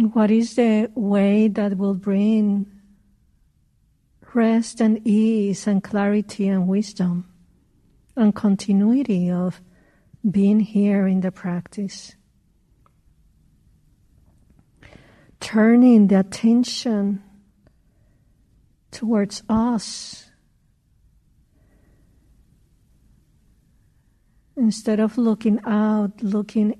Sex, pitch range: female, 195-225 Hz